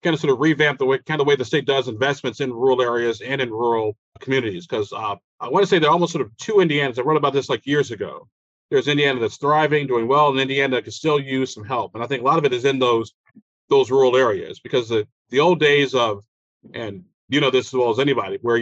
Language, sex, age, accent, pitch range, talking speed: English, male, 40-59, American, 130-150 Hz, 265 wpm